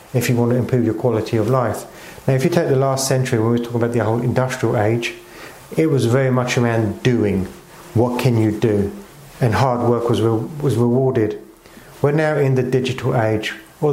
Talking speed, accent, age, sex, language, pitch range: 210 wpm, British, 40-59, male, English, 115-135 Hz